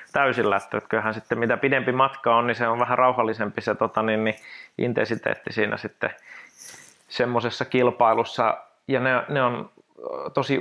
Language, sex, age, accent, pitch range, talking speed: Finnish, male, 30-49, native, 110-135 Hz, 140 wpm